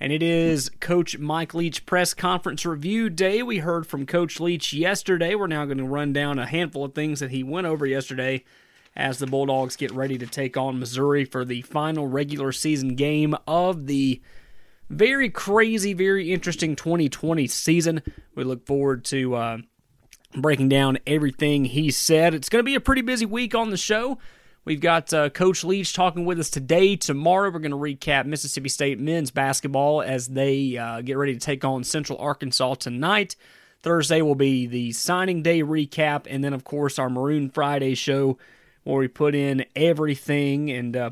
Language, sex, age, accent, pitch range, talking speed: English, male, 30-49, American, 135-165 Hz, 185 wpm